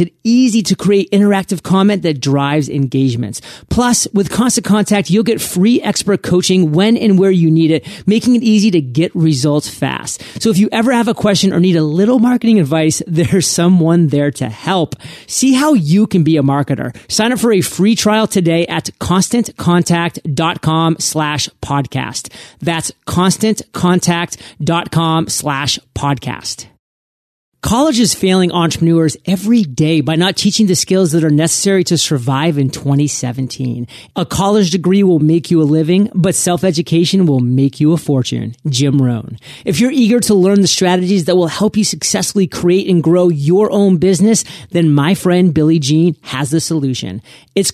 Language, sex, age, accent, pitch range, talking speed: English, male, 30-49, American, 155-200 Hz, 165 wpm